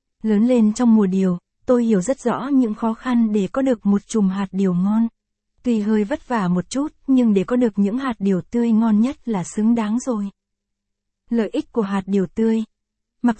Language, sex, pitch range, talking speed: Vietnamese, female, 205-240 Hz, 210 wpm